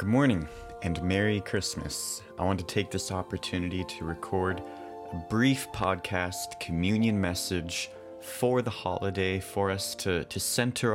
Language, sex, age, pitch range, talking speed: English, male, 30-49, 85-105 Hz, 140 wpm